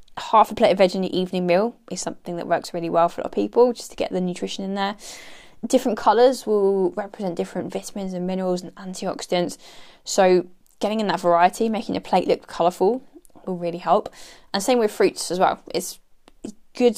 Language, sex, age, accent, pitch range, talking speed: English, female, 20-39, British, 175-210 Hz, 205 wpm